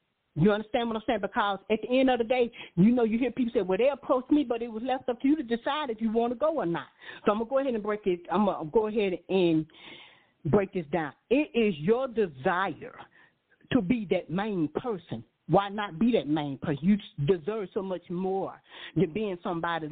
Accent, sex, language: American, female, English